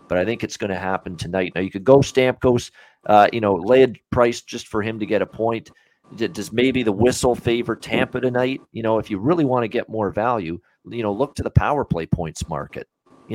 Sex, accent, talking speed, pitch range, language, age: male, American, 245 wpm, 95-120 Hz, English, 40-59